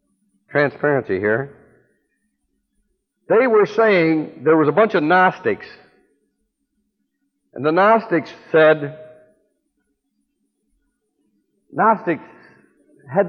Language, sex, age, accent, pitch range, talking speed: English, male, 60-79, American, 160-245 Hz, 75 wpm